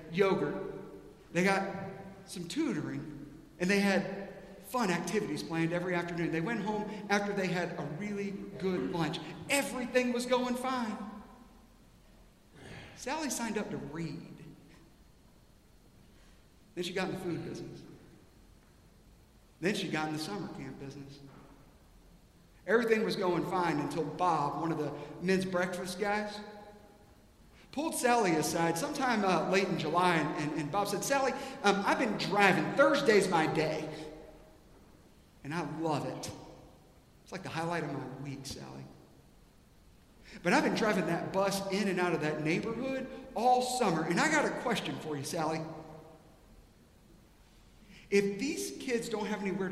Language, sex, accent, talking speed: English, male, American, 145 wpm